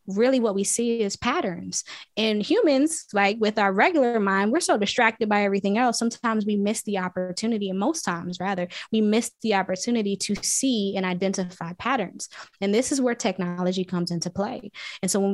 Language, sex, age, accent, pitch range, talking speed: English, female, 20-39, American, 185-215 Hz, 190 wpm